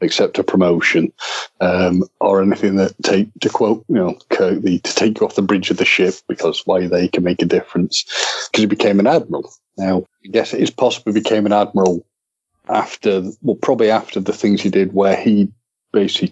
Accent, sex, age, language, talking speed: British, male, 30-49, English, 200 wpm